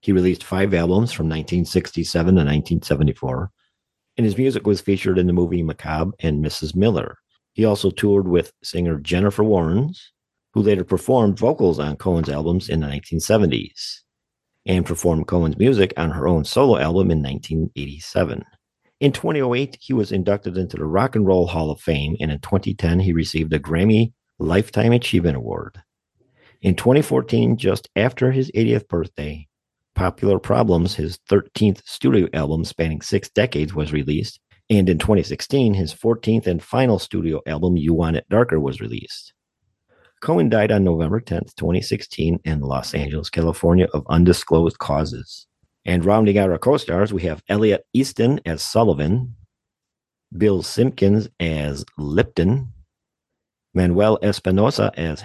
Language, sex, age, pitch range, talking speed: English, male, 50-69, 80-105 Hz, 145 wpm